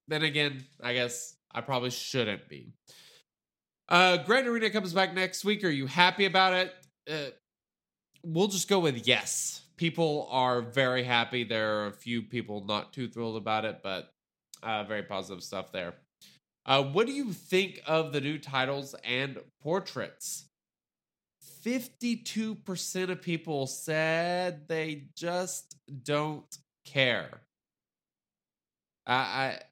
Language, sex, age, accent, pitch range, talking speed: English, male, 20-39, American, 120-175 Hz, 135 wpm